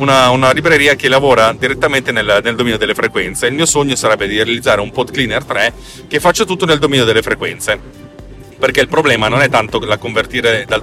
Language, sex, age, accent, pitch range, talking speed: Italian, male, 30-49, native, 110-140 Hz, 205 wpm